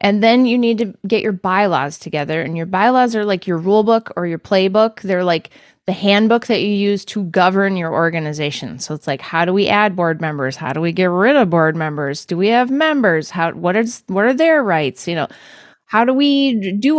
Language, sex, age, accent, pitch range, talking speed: English, female, 20-39, American, 175-235 Hz, 230 wpm